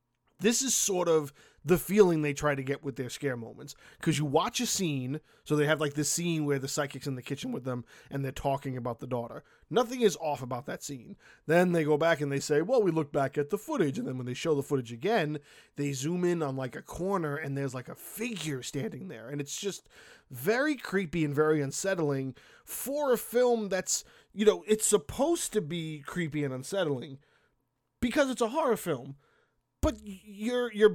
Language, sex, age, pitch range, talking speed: English, male, 20-39, 145-205 Hz, 215 wpm